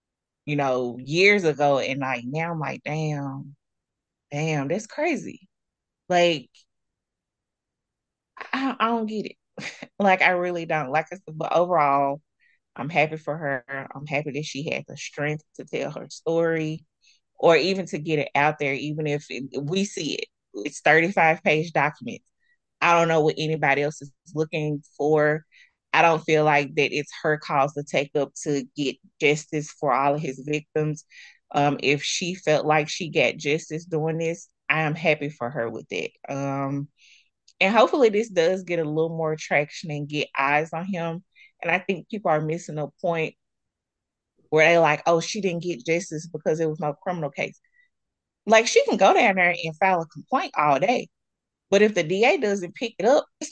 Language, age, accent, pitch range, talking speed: English, 20-39, American, 145-175 Hz, 180 wpm